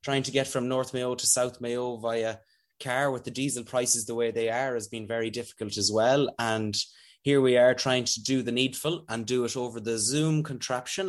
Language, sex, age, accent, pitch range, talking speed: English, male, 20-39, Irish, 115-145 Hz, 220 wpm